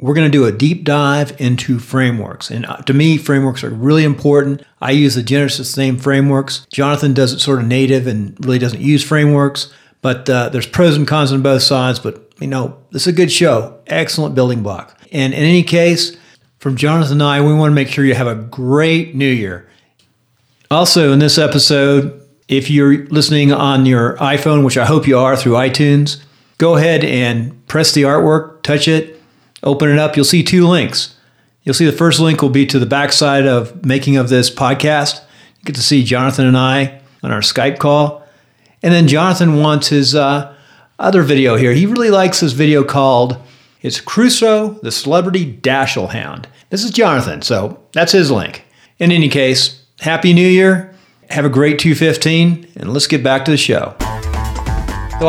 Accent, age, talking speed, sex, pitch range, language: American, 40-59, 190 wpm, male, 130-155 Hz, English